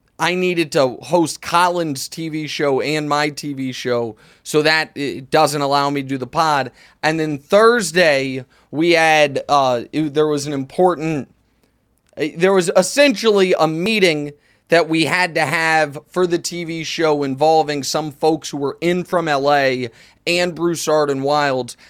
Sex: male